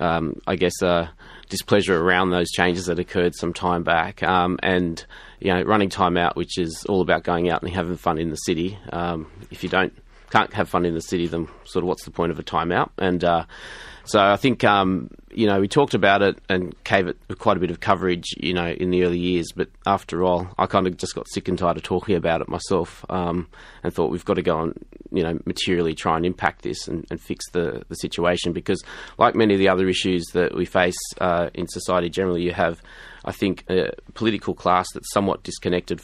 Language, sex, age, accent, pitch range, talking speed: English, male, 20-39, Australian, 85-95 Hz, 240 wpm